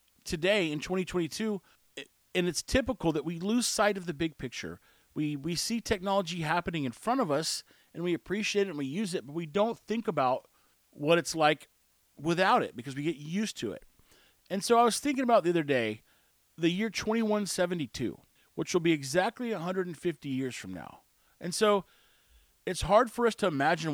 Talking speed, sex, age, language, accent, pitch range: 190 wpm, male, 40-59, English, American, 150-205 Hz